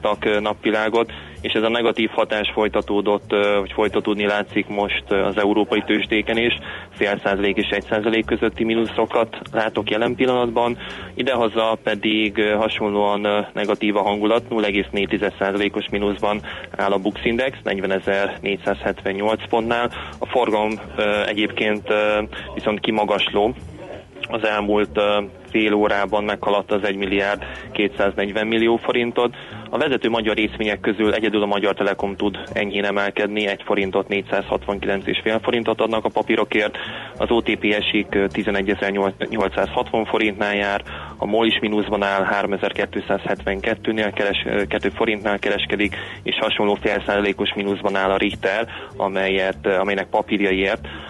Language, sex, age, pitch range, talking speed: Hungarian, male, 20-39, 100-110 Hz, 115 wpm